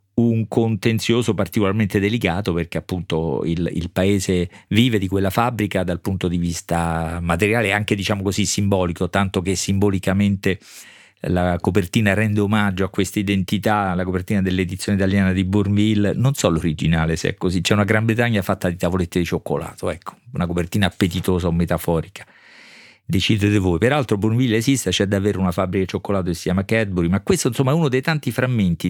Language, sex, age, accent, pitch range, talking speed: Italian, male, 50-69, native, 90-110 Hz, 170 wpm